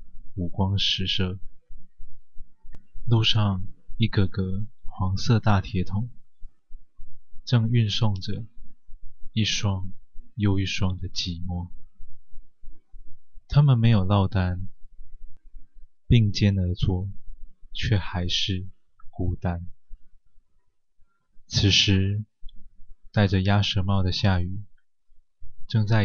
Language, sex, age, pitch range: Chinese, male, 20-39, 95-110 Hz